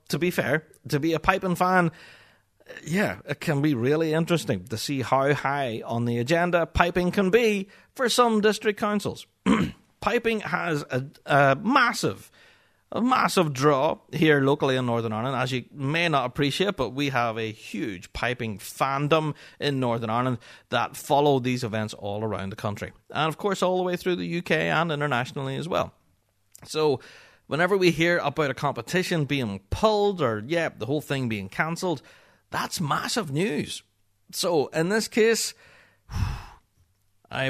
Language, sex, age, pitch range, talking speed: English, male, 30-49, 120-175 Hz, 160 wpm